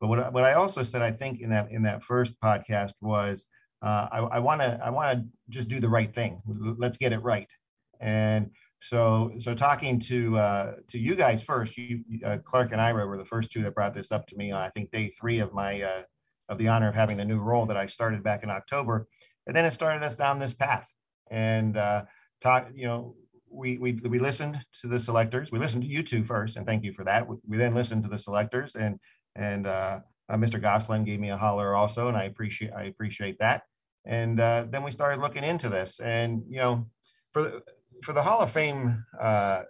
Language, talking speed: English, 230 wpm